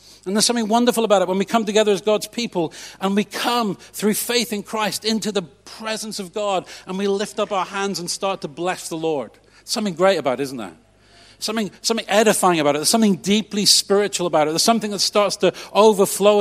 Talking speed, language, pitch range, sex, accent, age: 220 wpm, English, 130-195 Hz, male, British, 40-59